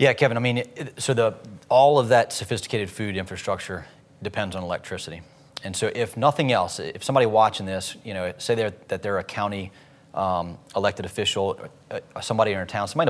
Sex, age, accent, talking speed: male, 30-49, American, 180 wpm